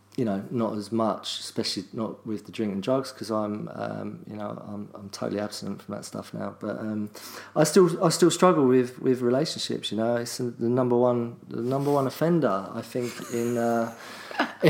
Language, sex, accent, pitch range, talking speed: English, male, British, 105-130 Hz, 200 wpm